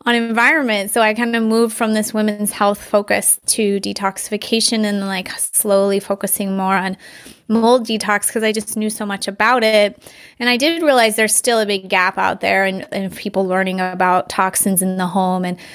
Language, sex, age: English, female, 20-39